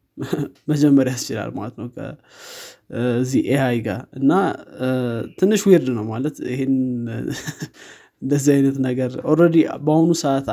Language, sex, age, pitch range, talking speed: Amharic, male, 20-39, 120-150 Hz, 110 wpm